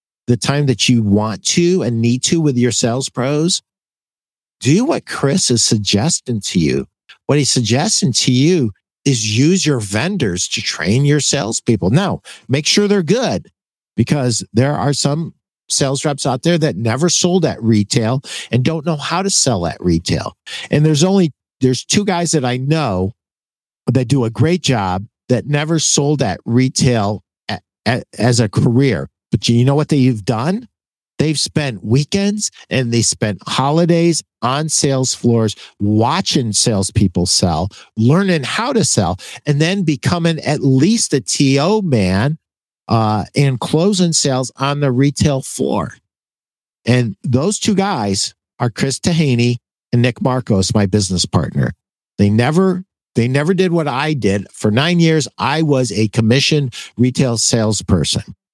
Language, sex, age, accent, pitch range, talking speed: English, male, 50-69, American, 115-155 Hz, 155 wpm